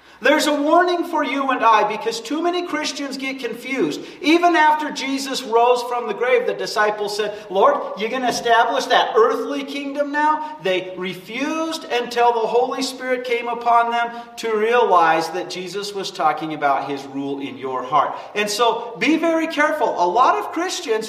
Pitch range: 195-280 Hz